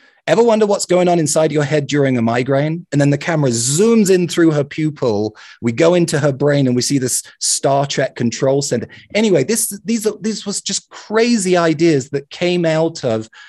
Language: English